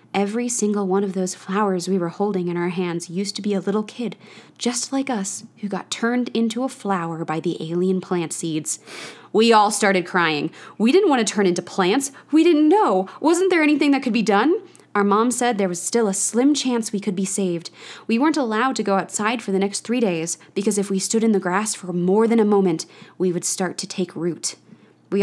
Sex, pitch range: female, 180-230 Hz